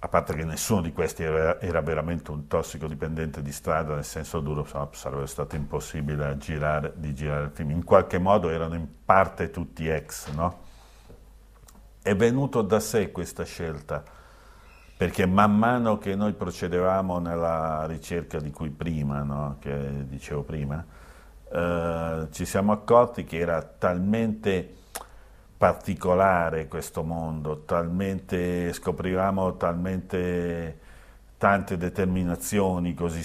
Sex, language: male, Italian